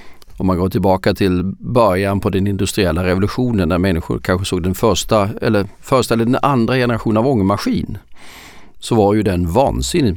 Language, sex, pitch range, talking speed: Swedish, male, 90-110 Hz, 170 wpm